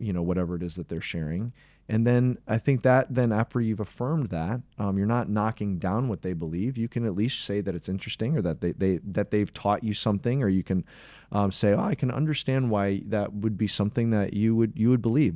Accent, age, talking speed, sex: American, 30-49, 245 wpm, male